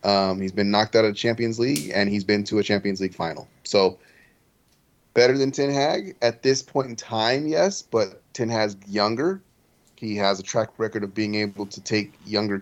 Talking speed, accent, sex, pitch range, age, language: 205 wpm, American, male, 100-120 Hz, 30-49, English